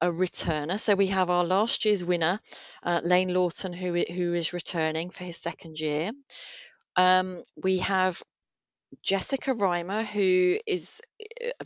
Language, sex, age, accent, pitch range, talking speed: English, female, 30-49, British, 175-220 Hz, 145 wpm